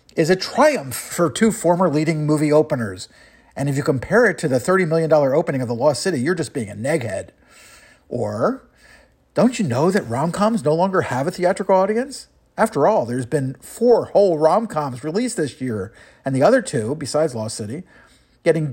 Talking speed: 185 wpm